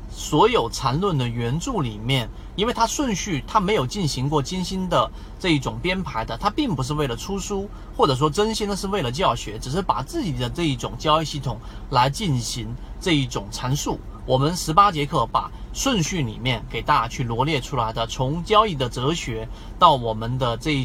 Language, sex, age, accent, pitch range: Chinese, male, 30-49, native, 120-170 Hz